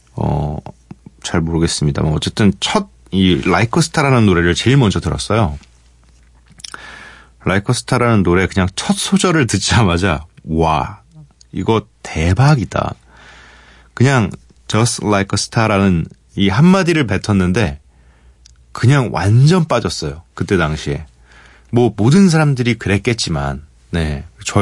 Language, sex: Korean, male